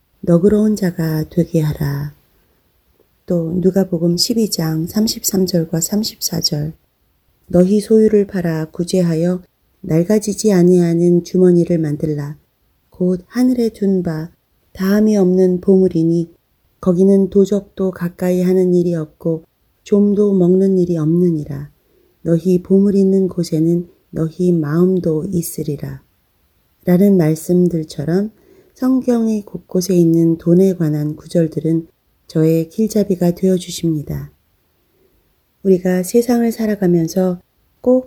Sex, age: female, 30-49